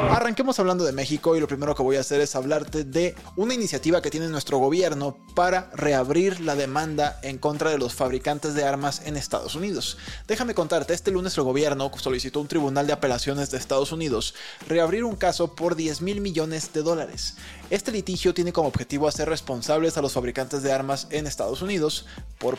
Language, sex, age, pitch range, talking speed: Spanish, male, 20-39, 130-165 Hz, 195 wpm